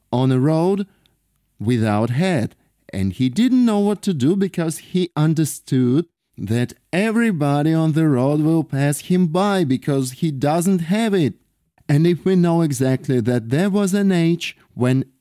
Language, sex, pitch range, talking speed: English, male, 115-165 Hz, 160 wpm